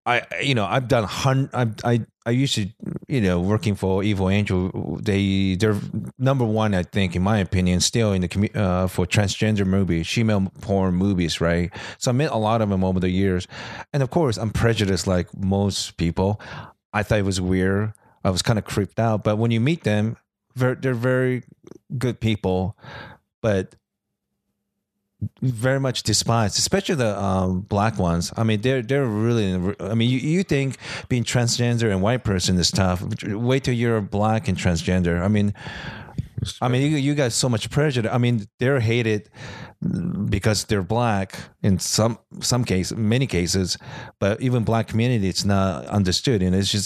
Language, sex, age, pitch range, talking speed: English, male, 30-49, 95-125 Hz, 180 wpm